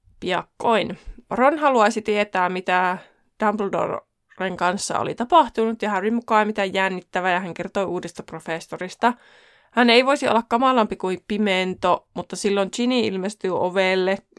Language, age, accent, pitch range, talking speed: Finnish, 20-39, native, 185-235 Hz, 130 wpm